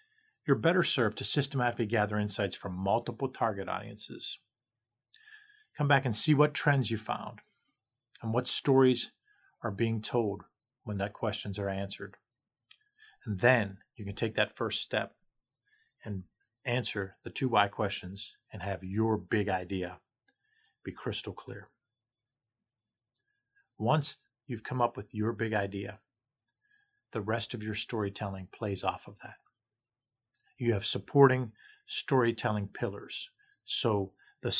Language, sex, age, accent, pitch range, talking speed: English, male, 50-69, American, 105-130 Hz, 130 wpm